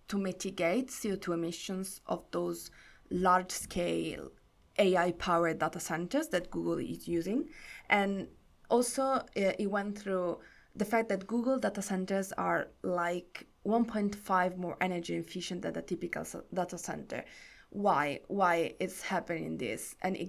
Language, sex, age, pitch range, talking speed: English, female, 20-39, 175-205 Hz, 135 wpm